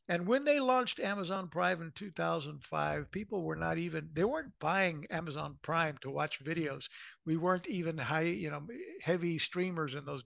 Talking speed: 175 wpm